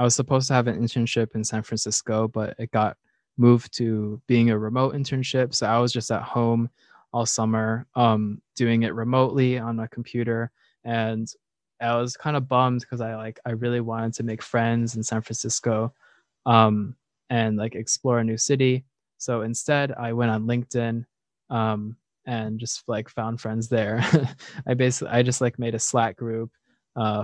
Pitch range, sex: 110-130 Hz, male